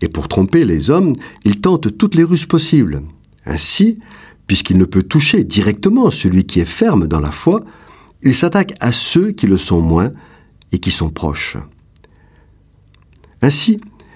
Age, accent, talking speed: 50-69, French, 155 wpm